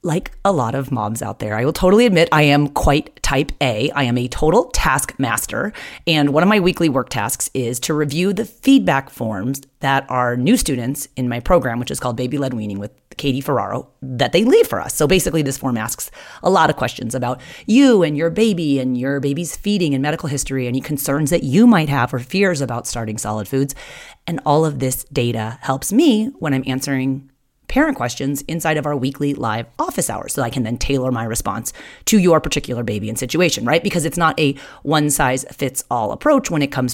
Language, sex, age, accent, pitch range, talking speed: English, female, 30-49, American, 125-170 Hz, 210 wpm